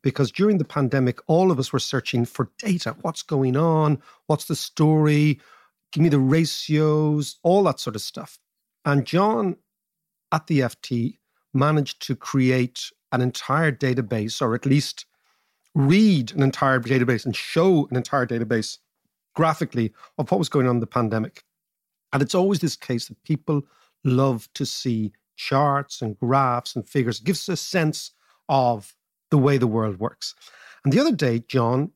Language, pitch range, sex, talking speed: English, 125-165 Hz, male, 165 wpm